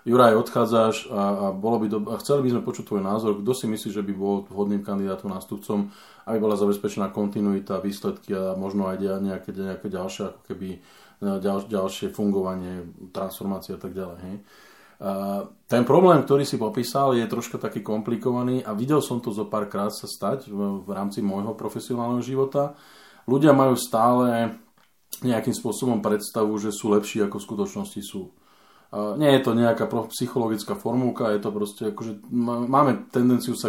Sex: male